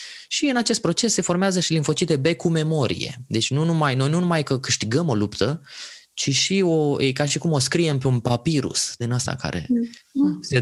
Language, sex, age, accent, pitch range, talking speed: Romanian, male, 20-39, native, 125-170 Hz, 210 wpm